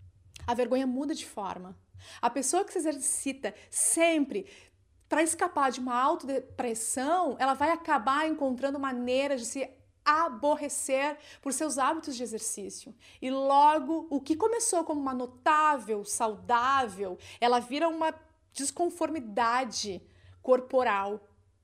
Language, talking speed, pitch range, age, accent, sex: Portuguese, 120 wpm, 220-305 Hz, 30-49, Brazilian, female